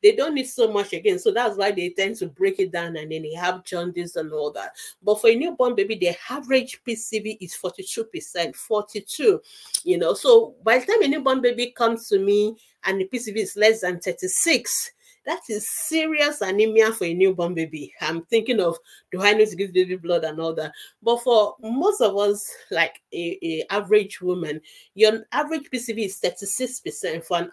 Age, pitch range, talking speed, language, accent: 40-59, 175-250 Hz, 210 wpm, English, Nigerian